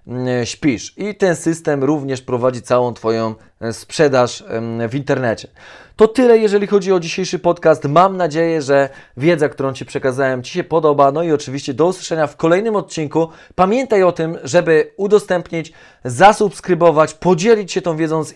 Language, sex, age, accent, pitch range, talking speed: Polish, male, 20-39, native, 140-170 Hz, 155 wpm